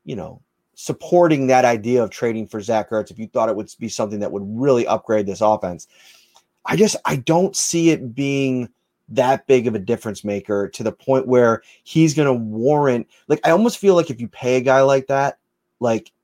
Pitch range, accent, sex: 115-145 Hz, American, male